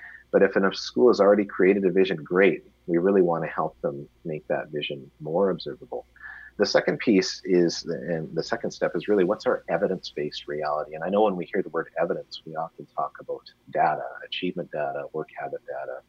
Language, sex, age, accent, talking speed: English, male, 30-49, American, 200 wpm